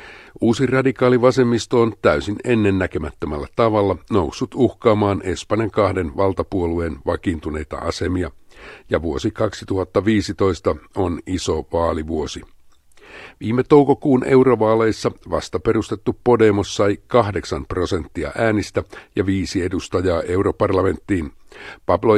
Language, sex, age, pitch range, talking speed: Finnish, male, 60-79, 95-110 Hz, 90 wpm